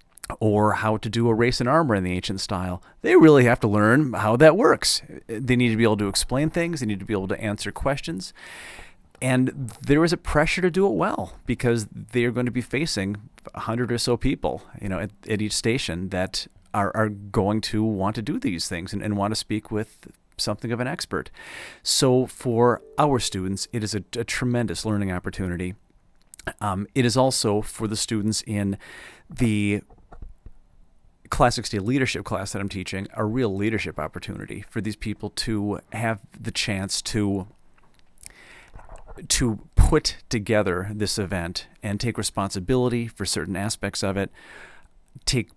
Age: 40-59